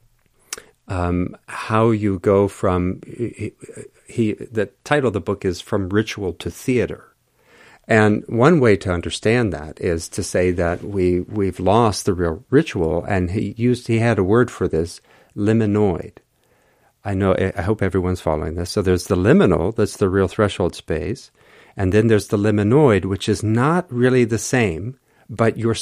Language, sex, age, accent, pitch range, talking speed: English, male, 50-69, American, 95-115 Hz, 165 wpm